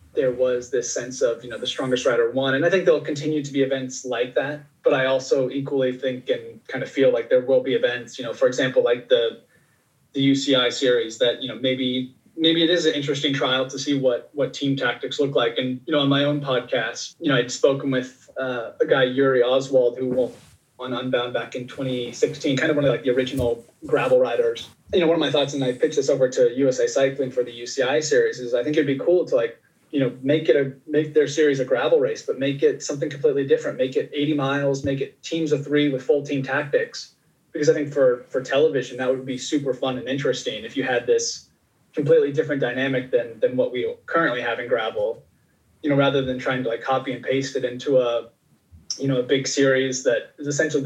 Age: 30-49